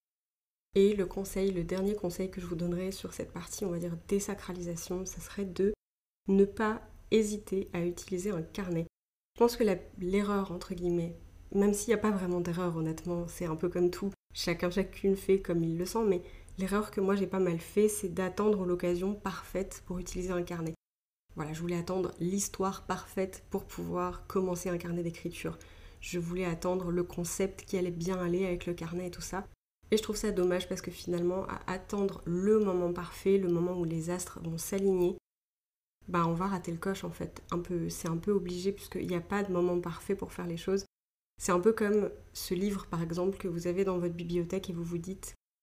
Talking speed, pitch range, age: 205 wpm, 175-195 Hz, 30-49